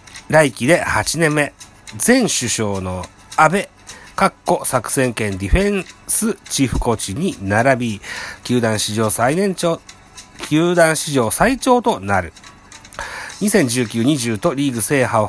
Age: 40-59